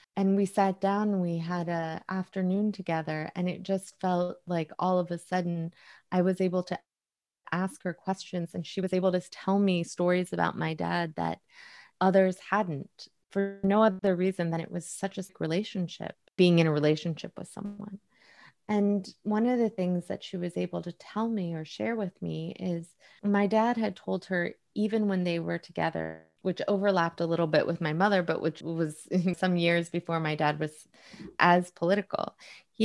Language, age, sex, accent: English, 20-39, female, American